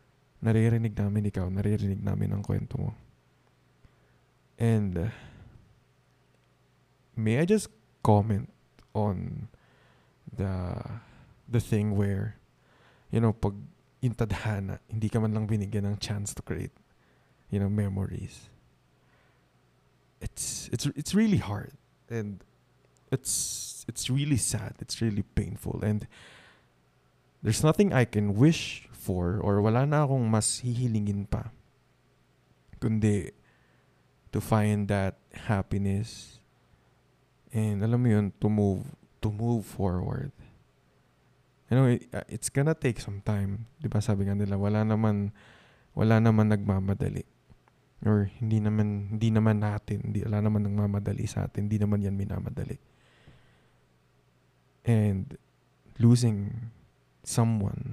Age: 20-39